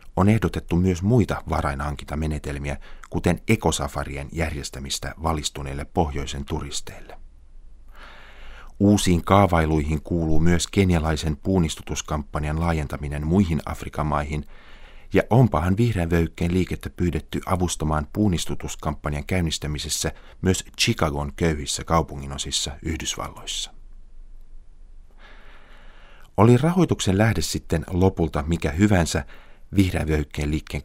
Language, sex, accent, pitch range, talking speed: Finnish, male, native, 75-90 Hz, 85 wpm